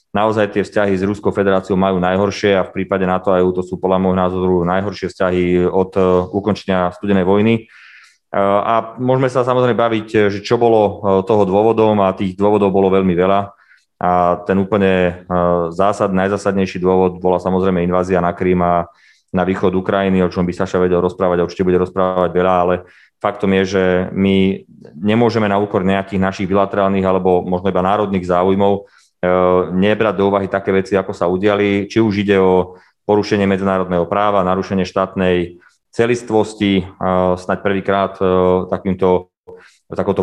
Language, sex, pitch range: Slovak, male, 90-100 Hz